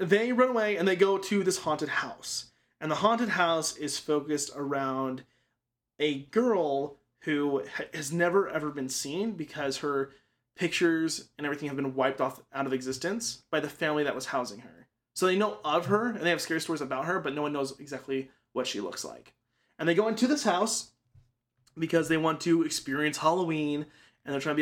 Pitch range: 130-170 Hz